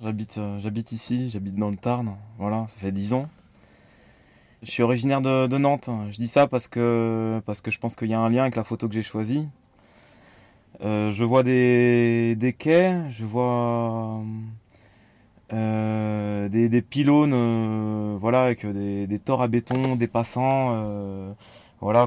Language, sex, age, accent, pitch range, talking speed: French, male, 20-39, French, 105-125 Hz, 170 wpm